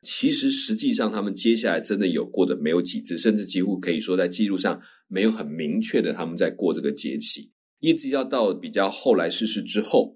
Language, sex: Chinese, male